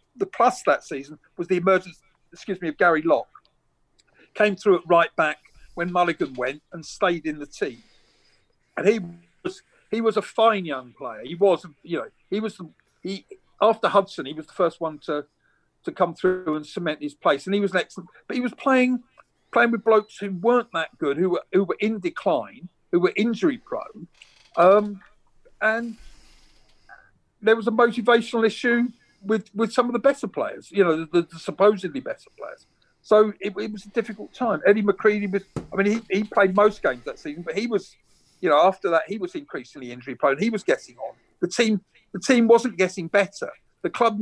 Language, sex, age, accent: English, male, 50-69, British